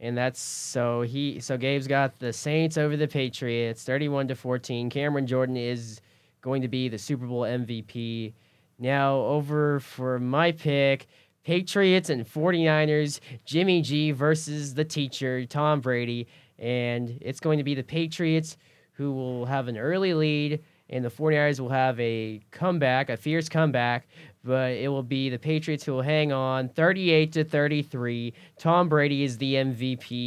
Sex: male